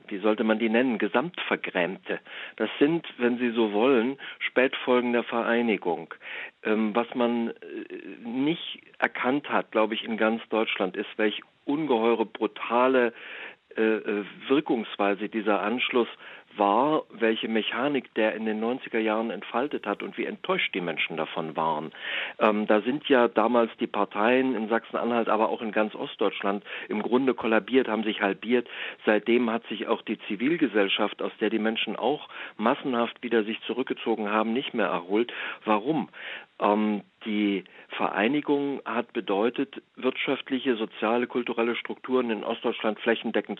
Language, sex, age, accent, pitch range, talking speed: German, male, 50-69, German, 105-120 Hz, 140 wpm